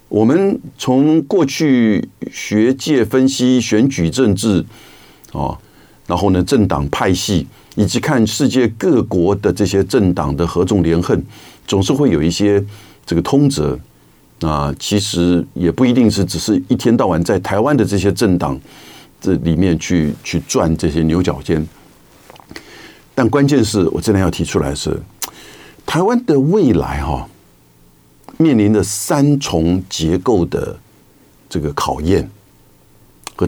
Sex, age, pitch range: male, 50-69, 80-105 Hz